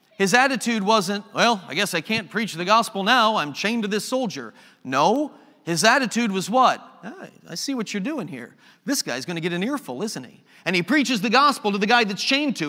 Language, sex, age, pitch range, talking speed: English, male, 40-59, 175-230 Hz, 225 wpm